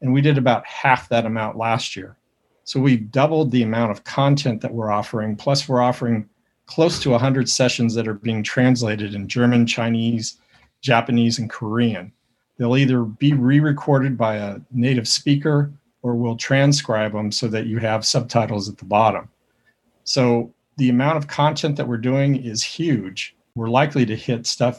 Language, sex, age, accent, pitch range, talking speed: English, male, 50-69, American, 115-135 Hz, 175 wpm